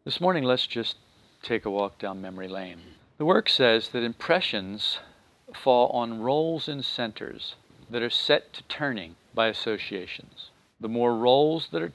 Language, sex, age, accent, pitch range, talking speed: English, male, 40-59, American, 105-130 Hz, 160 wpm